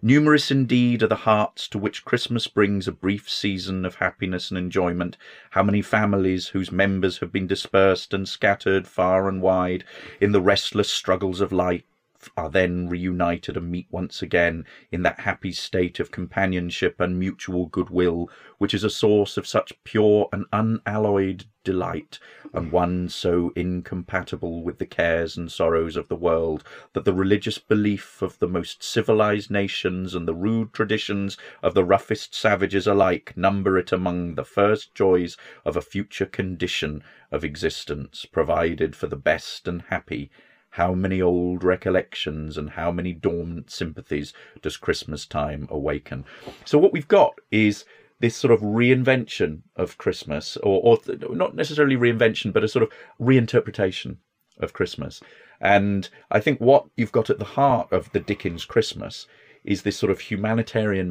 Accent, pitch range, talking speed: British, 90-105 Hz, 160 wpm